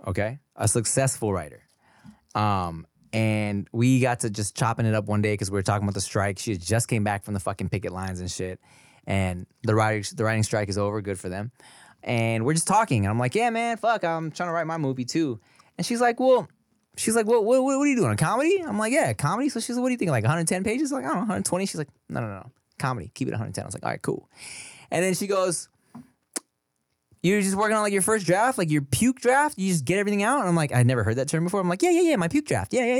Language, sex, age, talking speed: English, male, 20-39, 275 wpm